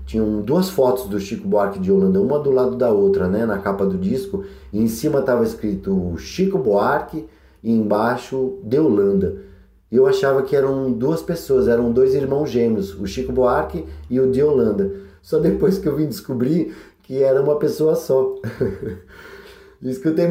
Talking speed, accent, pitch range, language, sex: 175 wpm, Brazilian, 100-150 Hz, Portuguese, male